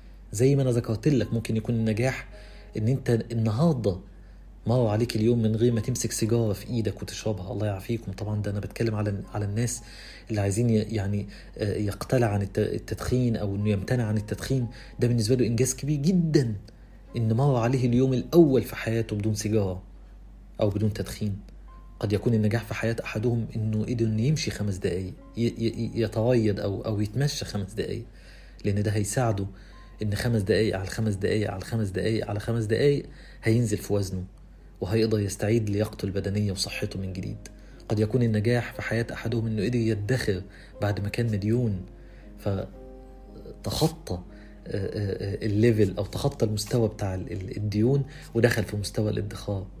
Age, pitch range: 40-59, 100-115 Hz